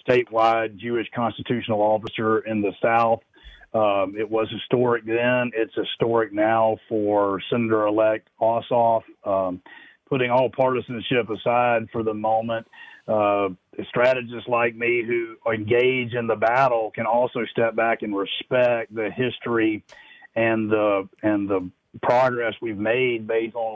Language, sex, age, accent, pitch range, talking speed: English, male, 40-59, American, 110-120 Hz, 130 wpm